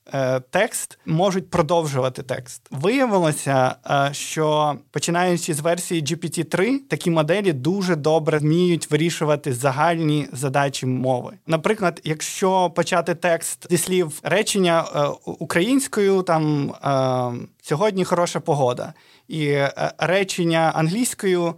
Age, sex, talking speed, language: 20-39, male, 95 wpm, Ukrainian